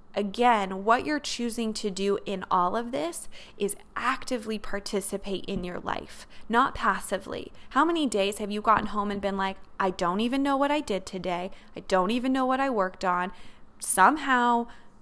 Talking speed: 180 wpm